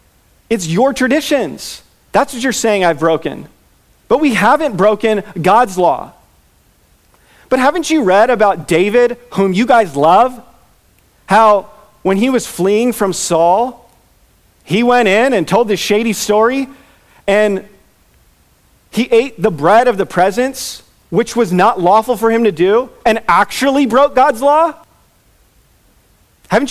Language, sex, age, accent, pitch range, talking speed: English, male, 40-59, American, 150-240 Hz, 140 wpm